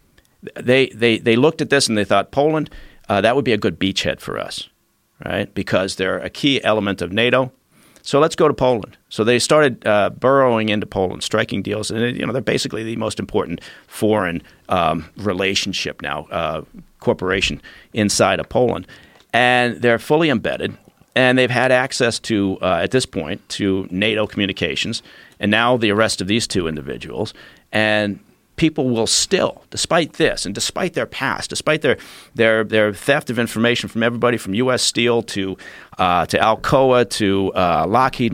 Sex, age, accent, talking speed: male, 50-69, American, 175 wpm